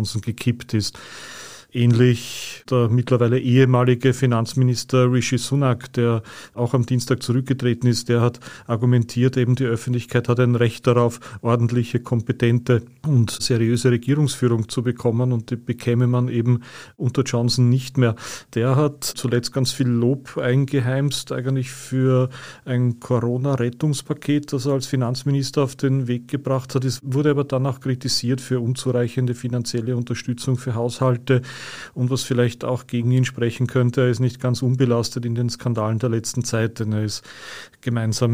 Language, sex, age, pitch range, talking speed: German, male, 40-59, 120-130 Hz, 150 wpm